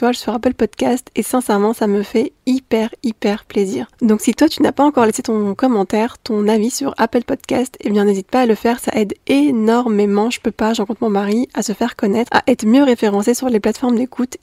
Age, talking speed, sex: 20-39, 235 wpm, female